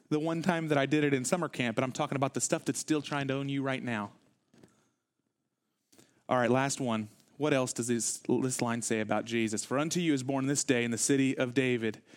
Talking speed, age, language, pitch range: 240 wpm, 30-49, English, 135-185 Hz